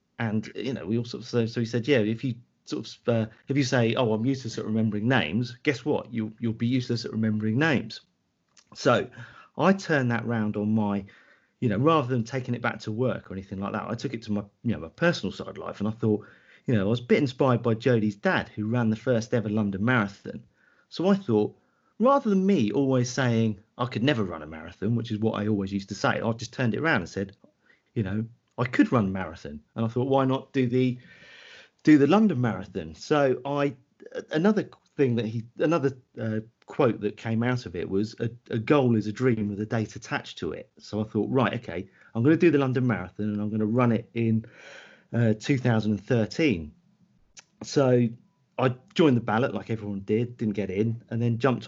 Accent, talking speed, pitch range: British, 225 wpm, 105-130 Hz